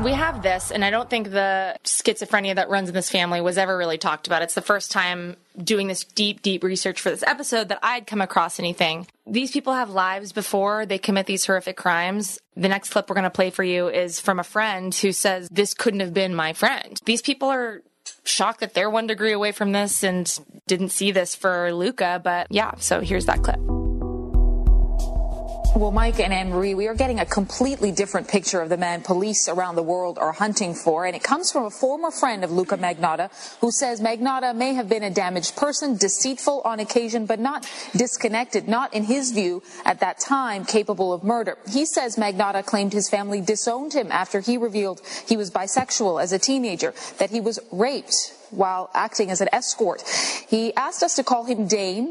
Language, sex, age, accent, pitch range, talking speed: English, female, 20-39, American, 185-230 Hz, 205 wpm